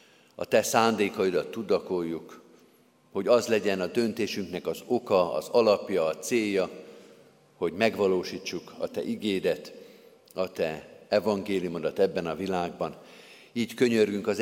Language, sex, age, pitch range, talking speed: Hungarian, male, 50-69, 95-115 Hz, 120 wpm